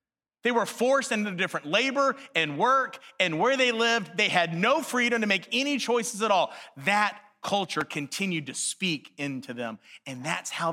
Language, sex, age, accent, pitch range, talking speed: English, male, 30-49, American, 140-205 Hz, 180 wpm